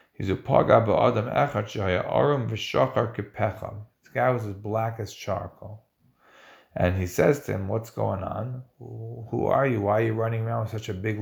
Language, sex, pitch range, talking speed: English, male, 105-120 Hz, 150 wpm